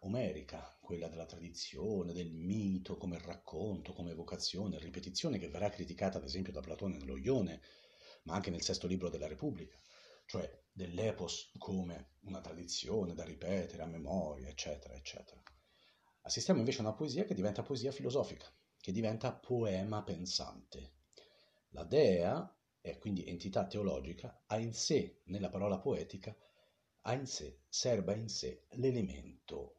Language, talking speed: Italian, 140 wpm